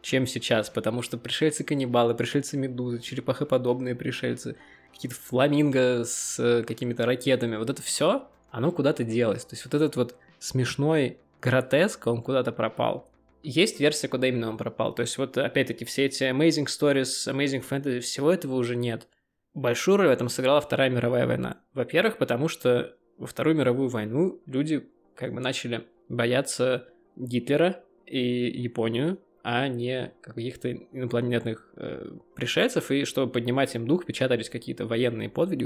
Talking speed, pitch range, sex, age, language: 145 wpm, 120-140 Hz, male, 20-39, Russian